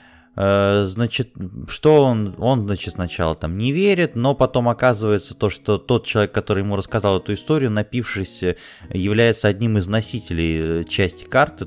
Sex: male